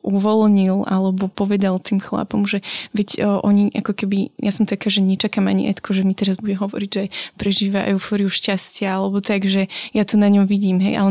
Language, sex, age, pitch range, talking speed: Slovak, female, 20-39, 195-215 Hz, 195 wpm